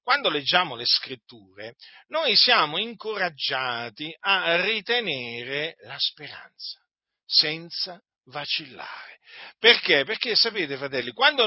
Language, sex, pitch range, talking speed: Italian, male, 150-235 Hz, 95 wpm